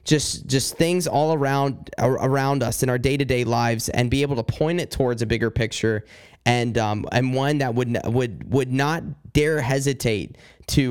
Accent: American